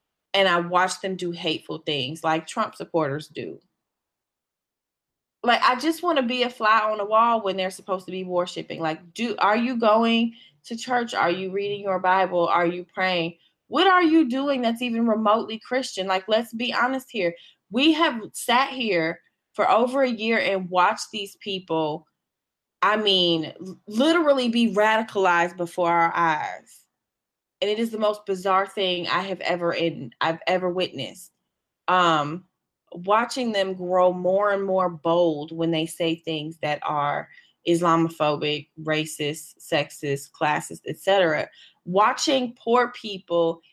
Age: 20-39